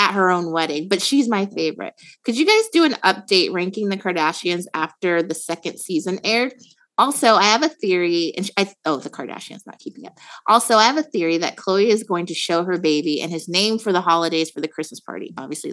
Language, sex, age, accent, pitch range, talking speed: English, female, 30-49, American, 170-225 Hz, 225 wpm